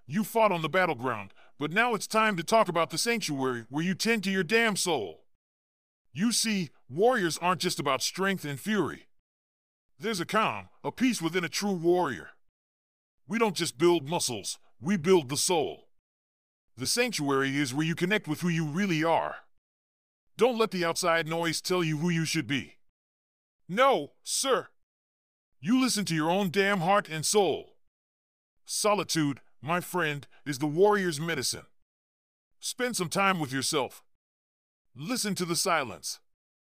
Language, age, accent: English, 40-59, American